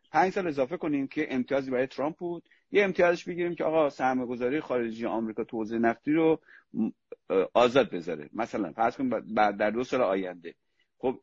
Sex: male